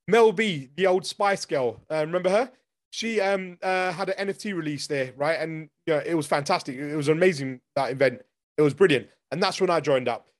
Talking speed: 220 wpm